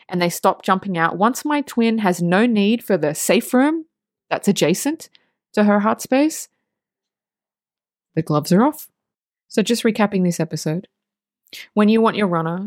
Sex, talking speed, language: female, 165 wpm, English